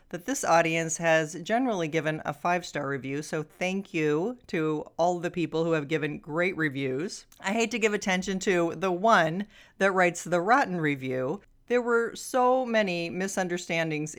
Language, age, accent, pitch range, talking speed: English, 40-59, American, 160-225 Hz, 165 wpm